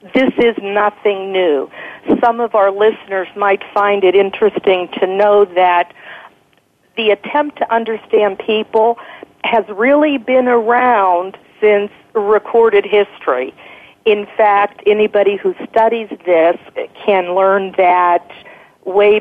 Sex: female